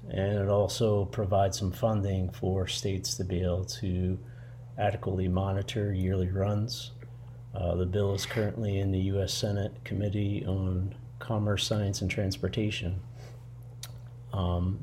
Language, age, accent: English, 30-49, American